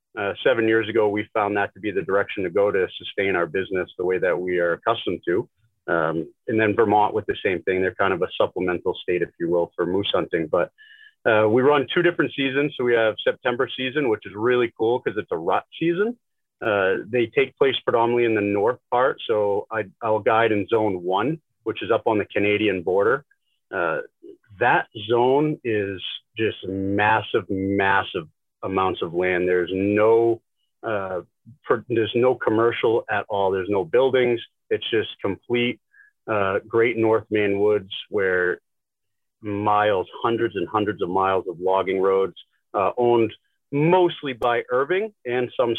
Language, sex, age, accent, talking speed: English, male, 40-59, American, 175 wpm